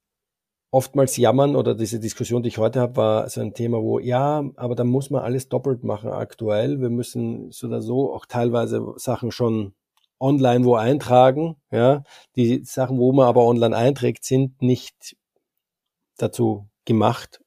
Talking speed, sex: 160 wpm, male